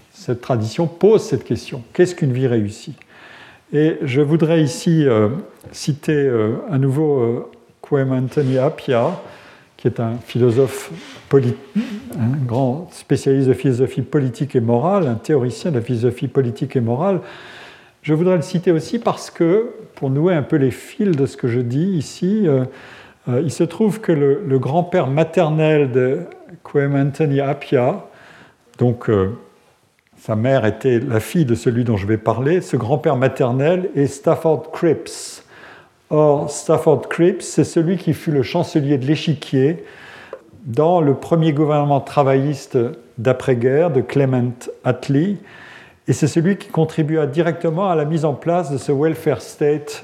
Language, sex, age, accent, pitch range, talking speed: French, male, 50-69, French, 125-165 Hz, 155 wpm